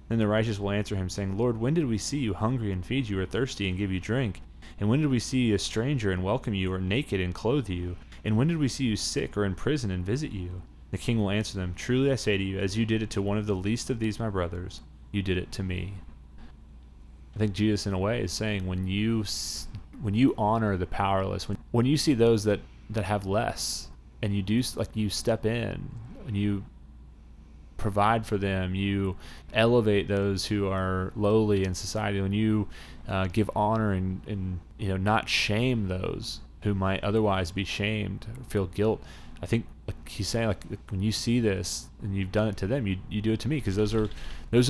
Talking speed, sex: 230 wpm, male